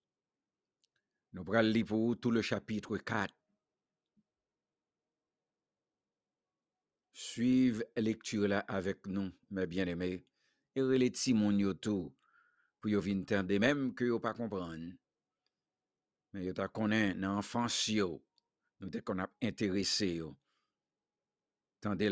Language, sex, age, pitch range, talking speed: English, male, 60-79, 95-115 Hz, 110 wpm